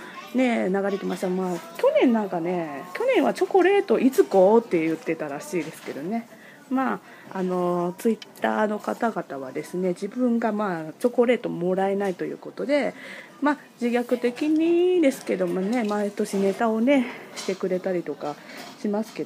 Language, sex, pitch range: Japanese, female, 190-285 Hz